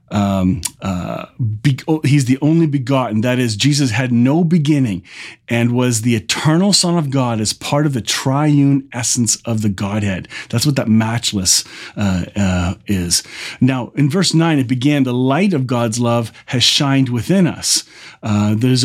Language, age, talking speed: English, 40-59, 170 wpm